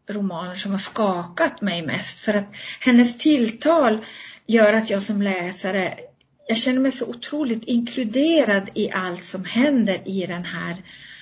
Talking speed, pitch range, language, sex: 150 wpm, 185-225 Hz, Swedish, female